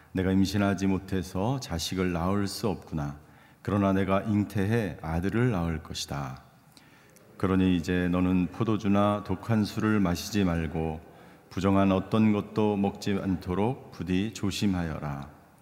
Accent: native